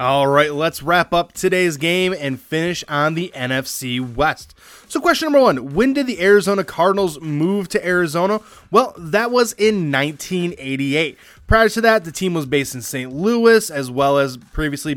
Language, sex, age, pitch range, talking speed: English, male, 20-39, 135-185 Hz, 175 wpm